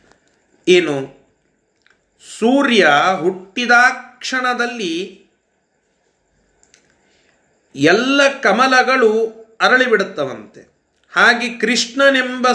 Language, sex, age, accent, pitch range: Kannada, male, 30-49, native, 205-250 Hz